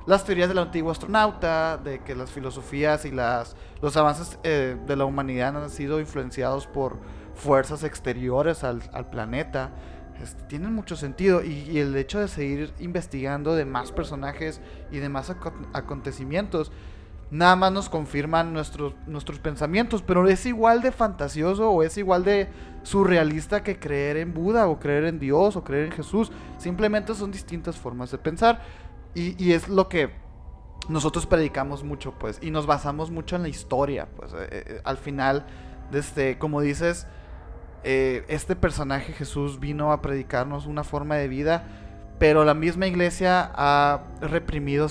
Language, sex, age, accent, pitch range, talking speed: Spanish, male, 30-49, Mexican, 140-175 Hz, 160 wpm